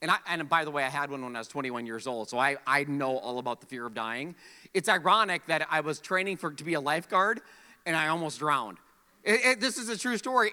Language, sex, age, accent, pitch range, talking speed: English, male, 30-49, American, 185-285 Hz, 270 wpm